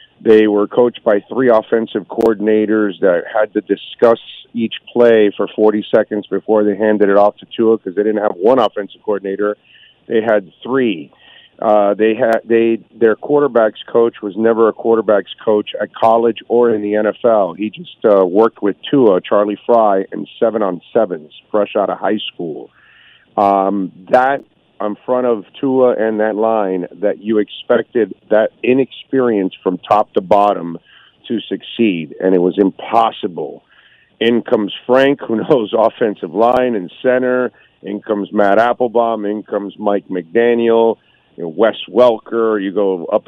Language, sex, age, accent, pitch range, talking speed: English, male, 50-69, American, 100-115 Hz, 160 wpm